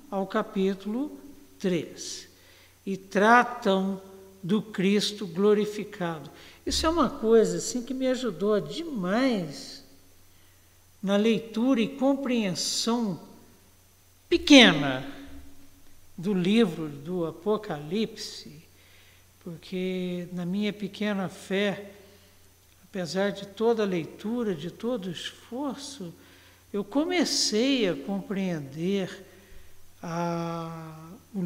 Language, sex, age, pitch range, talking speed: Portuguese, male, 60-79, 175-245 Hz, 85 wpm